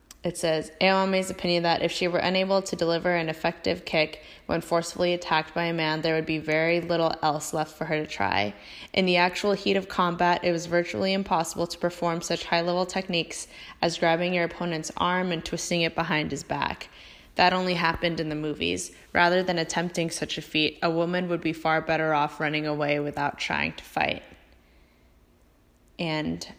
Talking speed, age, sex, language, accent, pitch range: 185 wpm, 20-39, female, English, American, 150-175 Hz